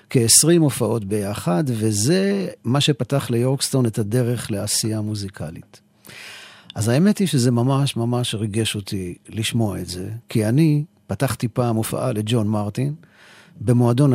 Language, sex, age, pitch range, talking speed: Hebrew, male, 50-69, 110-150 Hz, 125 wpm